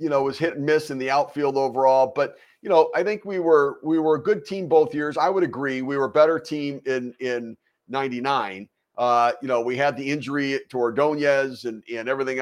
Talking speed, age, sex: 225 wpm, 50-69, male